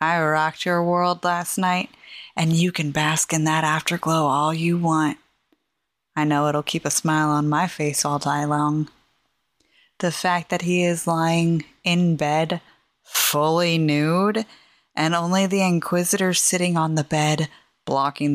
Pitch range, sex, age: 155-185 Hz, female, 20-39